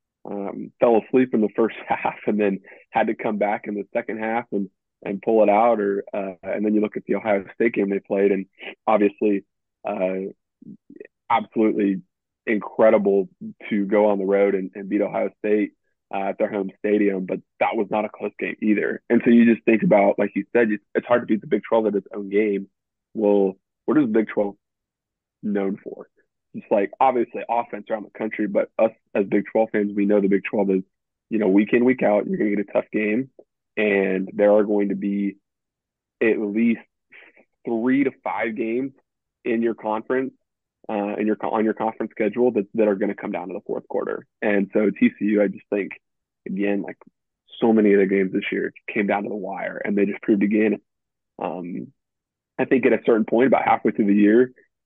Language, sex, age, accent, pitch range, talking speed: English, male, 20-39, American, 100-110 Hz, 210 wpm